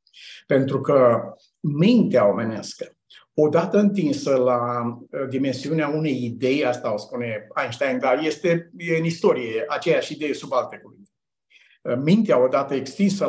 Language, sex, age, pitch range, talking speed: Romanian, male, 50-69, 135-185 Hz, 115 wpm